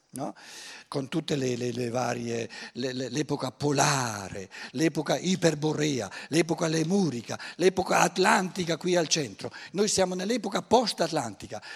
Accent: native